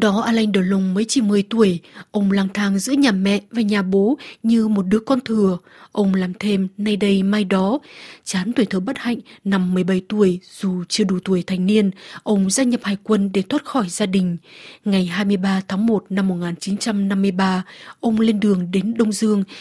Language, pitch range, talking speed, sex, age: Vietnamese, 190-230 Hz, 200 wpm, female, 20-39